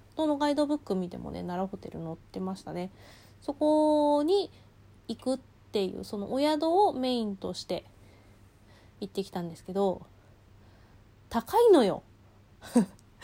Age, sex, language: 20-39, female, Japanese